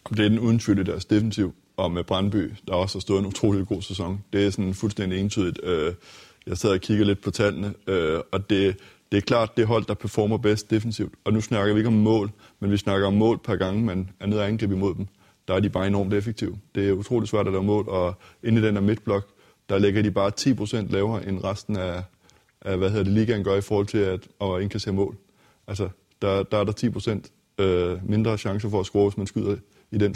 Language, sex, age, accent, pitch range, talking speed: Danish, male, 30-49, native, 95-105 Hz, 230 wpm